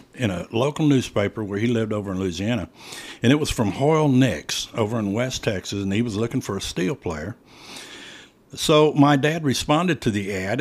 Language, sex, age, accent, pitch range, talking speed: English, male, 60-79, American, 105-140 Hz, 200 wpm